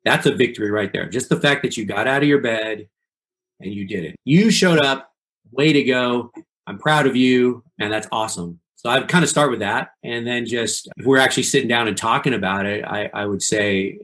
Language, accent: English, American